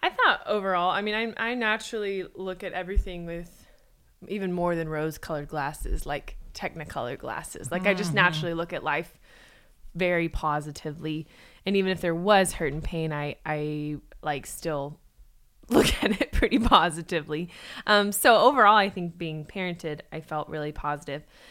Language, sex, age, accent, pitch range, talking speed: English, female, 20-39, American, 155-195 Hz, 160 wpm